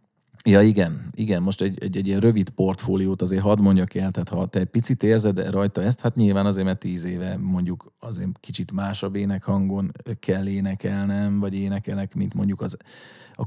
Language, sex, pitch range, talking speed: Hungarian, male, 90-100 Hz, 185 wpm